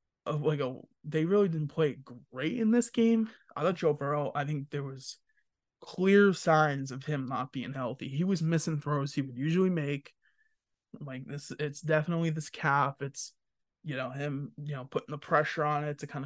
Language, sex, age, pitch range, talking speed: English, male, 20-39, 140-165 Hz, 195 wpm